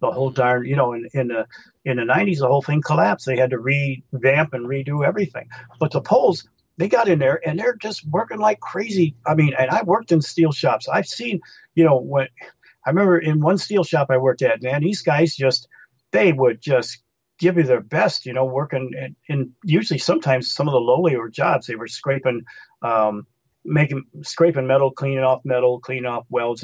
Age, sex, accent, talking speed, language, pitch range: 40-59, male, American, 210 wpm, English, 125-155 Hz